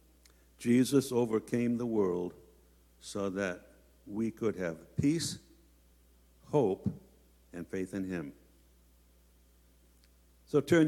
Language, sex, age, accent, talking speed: English, male, 60-79, American, 95 wpm